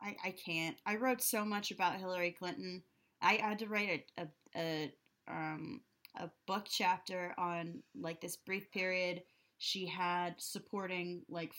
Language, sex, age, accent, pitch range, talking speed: English, female, 20-39, American, 170-215 Hz, 155 wpm